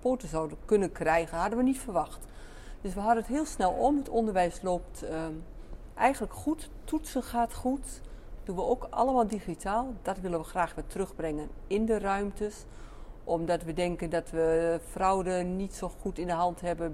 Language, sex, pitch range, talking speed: Dutch, female, 165-220 Hz, 175 wpm